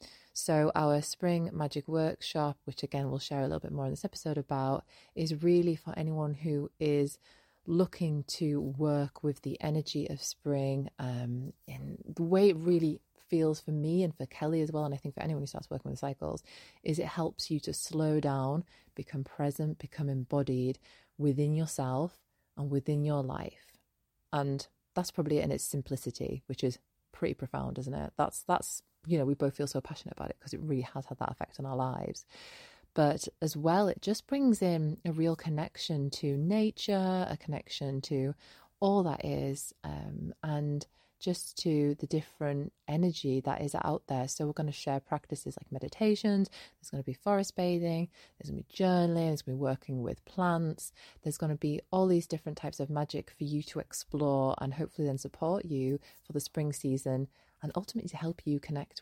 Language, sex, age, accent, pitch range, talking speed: English, female, 30-49, British, 135-165 Hz, 195 wpm